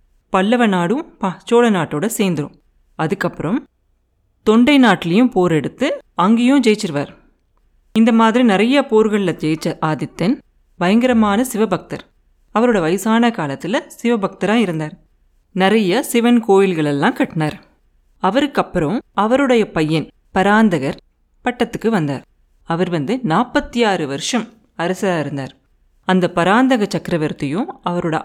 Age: 30-49